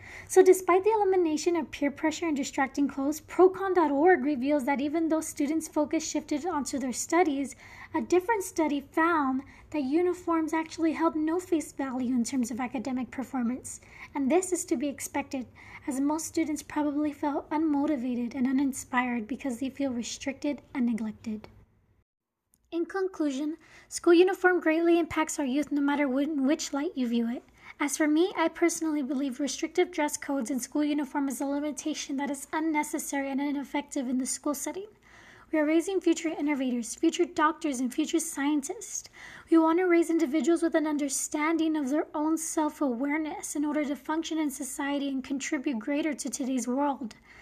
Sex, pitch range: female, 275-325 Hz